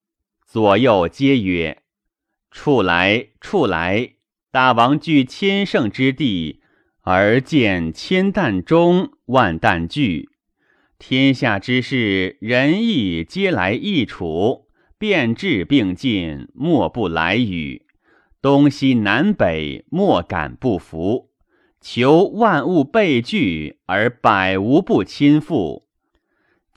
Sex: male